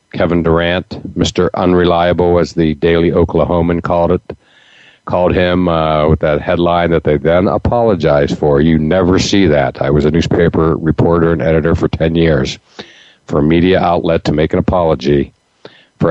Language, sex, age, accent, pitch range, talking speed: English, male, 50-69, American, 80-95 Hz, 165 wpm